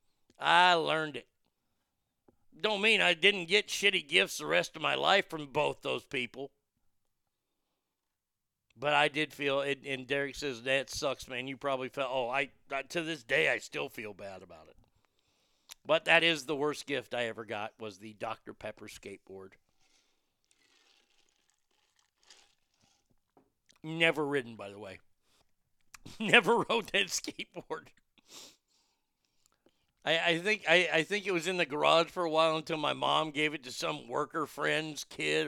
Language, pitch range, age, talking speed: English, 120-160 Hz, 50-69, 155 wpm